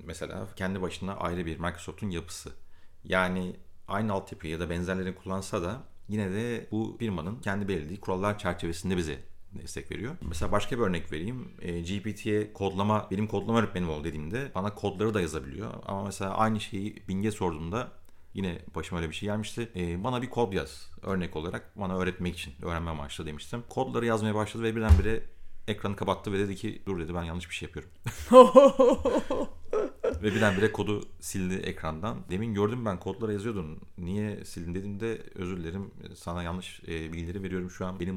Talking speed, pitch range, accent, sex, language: 170 wpm, 85-105 Hz, native, male, Turkish